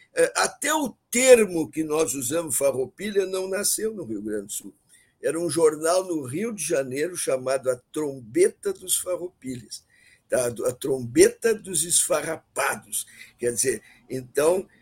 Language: Portuguese